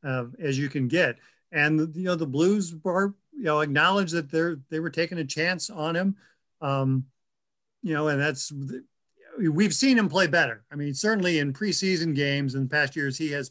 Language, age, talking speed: English, 50-69, 200 wpm